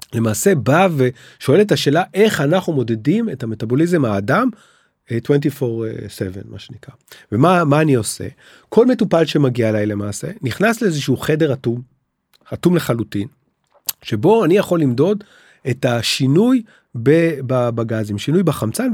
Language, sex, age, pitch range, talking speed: Hebrew, male, 30-49, 120-180 Hz, 120 wpm